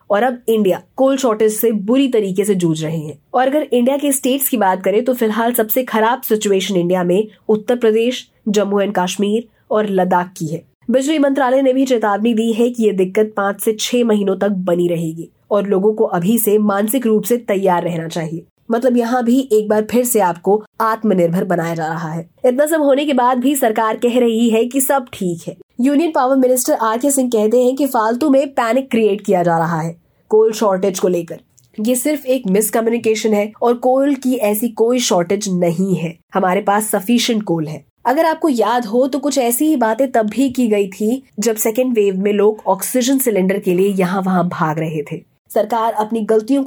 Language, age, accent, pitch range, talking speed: Hindi, 20-39, native, 190-245 Hz, 210 wpm